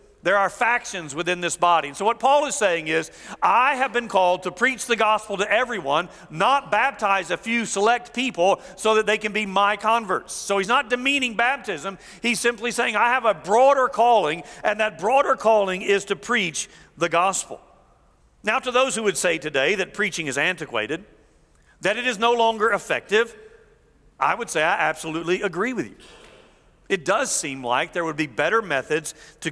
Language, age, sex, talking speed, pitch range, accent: English, 50-69, male, 190 wpm, 180-255 Hz, American